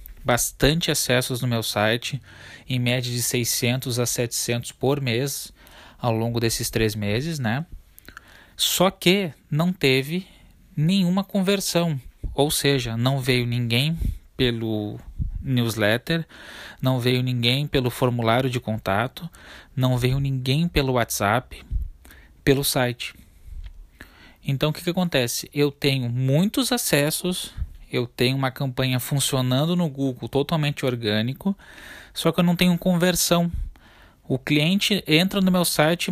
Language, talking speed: Portuguese, 125 wpm